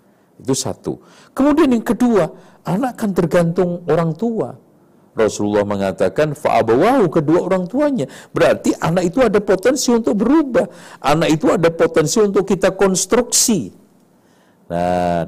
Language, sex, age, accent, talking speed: Indonesian, male, 50-69, native, 120 wpm